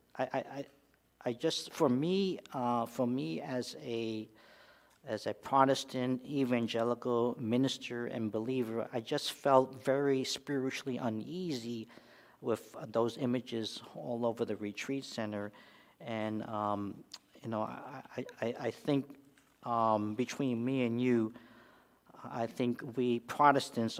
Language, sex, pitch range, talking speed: English, male, 110-130 Hz, 125 wpm